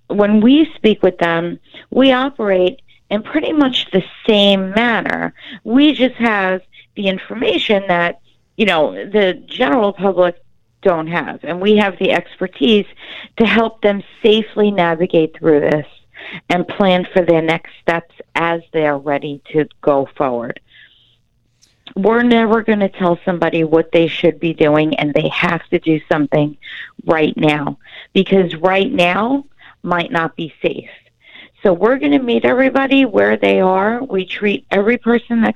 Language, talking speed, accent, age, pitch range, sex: English, 155 wpm, American, 50-69, 170-225 Hz, female